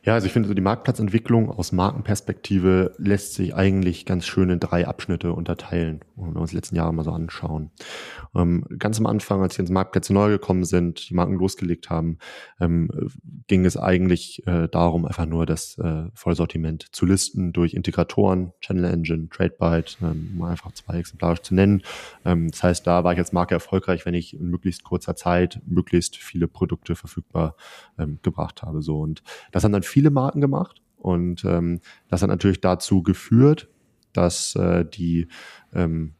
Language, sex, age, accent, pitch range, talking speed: German, male, 20-39, German, 85-95 Hz, 180 wpm